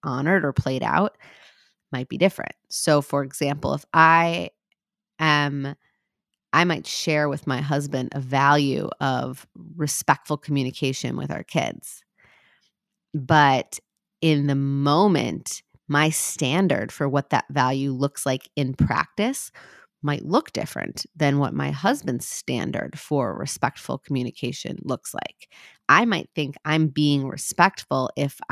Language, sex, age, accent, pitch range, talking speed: English, female, 30-49, American, 135-150 Hz, 130 wpm